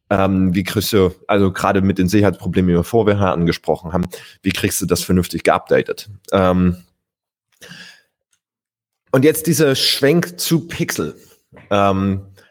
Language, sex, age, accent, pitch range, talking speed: German, male, 30-49, German, 100-150 Hz, 135 wpm